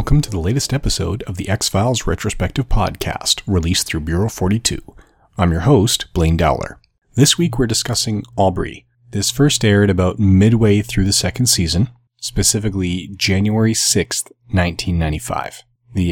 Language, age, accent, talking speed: English, 30-49, American, 140 wpm